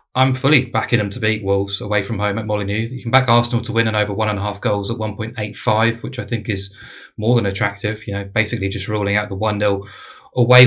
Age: 20-39